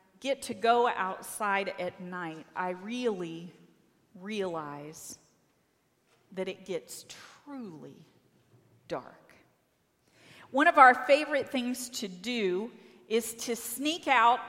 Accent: American